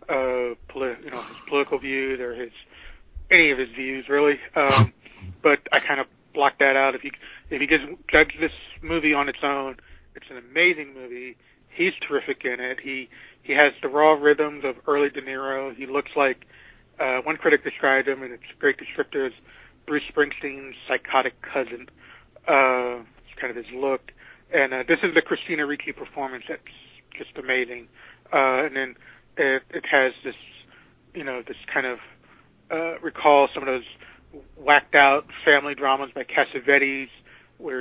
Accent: American